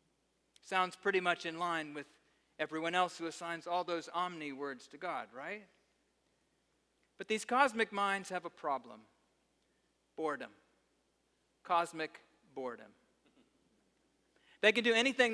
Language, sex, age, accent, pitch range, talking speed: English, male, 40-59, American, 155-210 Hz, 115 wpm